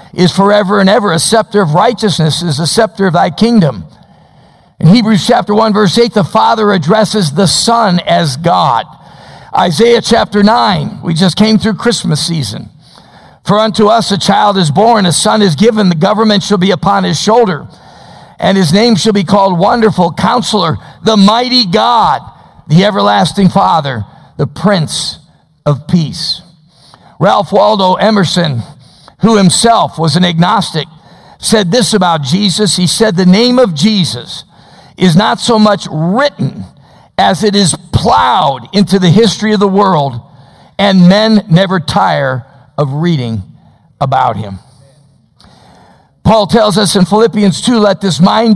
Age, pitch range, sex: 50-69, 160-210 Hz, male